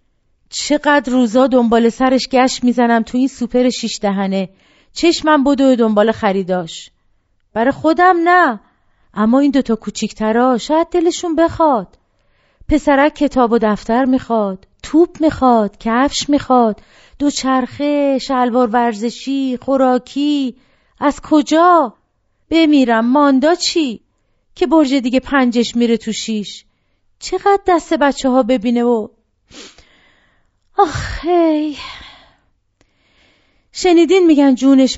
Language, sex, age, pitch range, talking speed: Persian, female, 40-59, 235-320 Hz, 105 wpm